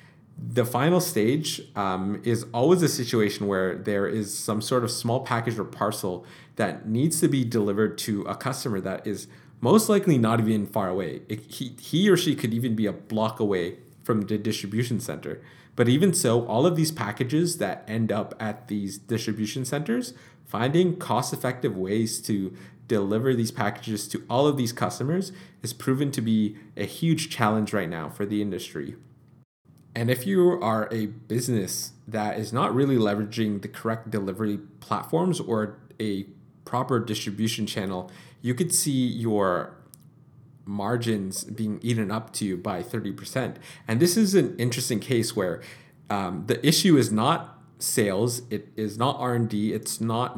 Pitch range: 105-130 Hz